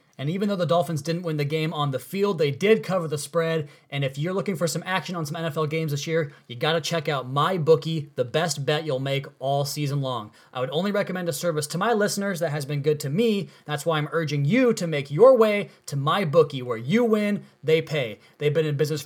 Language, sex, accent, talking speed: English, male, American, 250 wpm